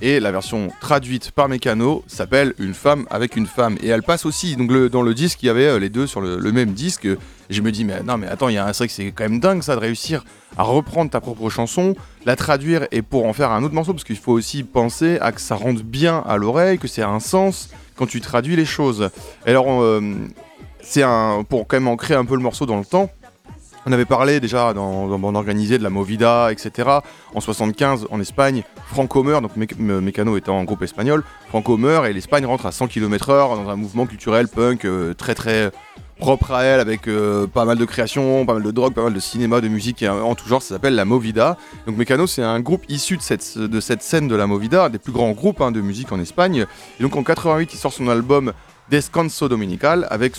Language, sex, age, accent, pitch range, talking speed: French, male, 20-39, French, 110-140 Hz, 245 wpm